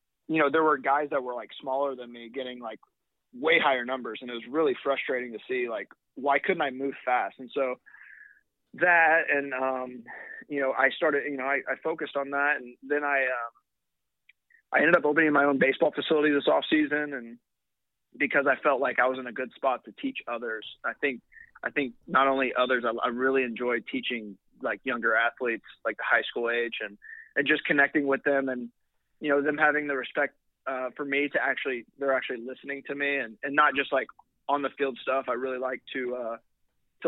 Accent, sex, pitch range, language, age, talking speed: American, male, 125-145 Hz, English, 20-39, 215 wpm